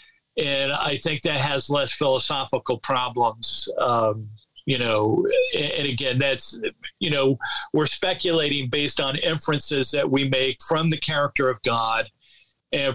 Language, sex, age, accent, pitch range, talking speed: English, male, 50-69, American, 130-155 Hz, 140 wpm